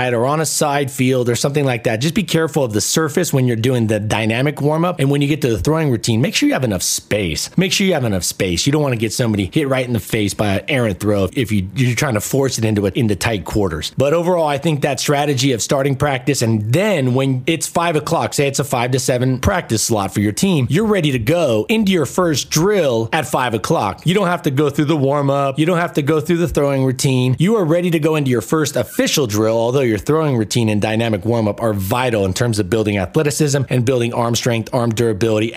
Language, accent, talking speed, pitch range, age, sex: English, American, 260 wpm, 115-145 Hz, 30-49, male